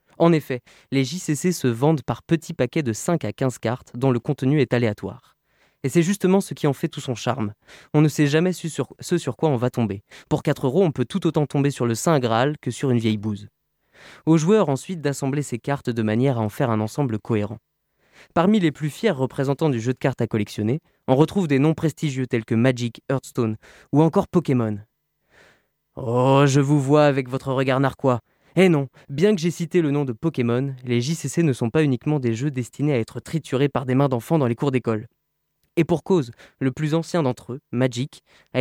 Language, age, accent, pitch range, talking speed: French, 20-39, French, 125-160 Hz, 220 wpm